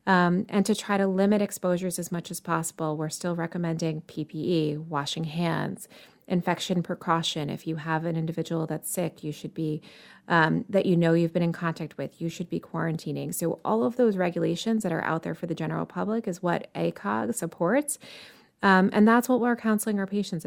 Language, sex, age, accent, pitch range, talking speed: English, female, 30-49, American, 165-210 Hz, 195 wpm